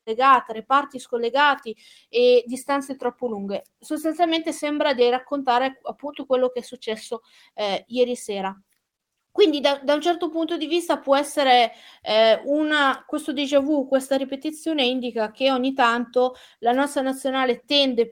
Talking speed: 140 wpm